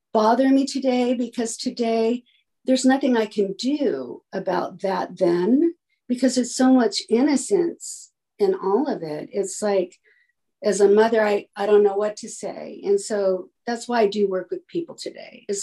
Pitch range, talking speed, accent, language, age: 190-260 Hz, 175 wpm, American, English, 50-69